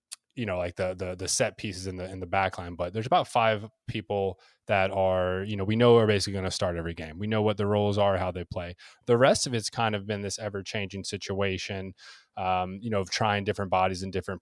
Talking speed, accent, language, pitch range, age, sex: 250 wpm, American, English, 95-120 Hz, 20-39, male